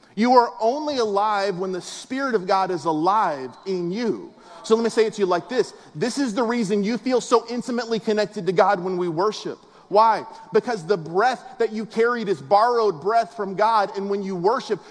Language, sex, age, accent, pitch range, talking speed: English, male, 30-49, American, 195-230 Hz, 210 wpm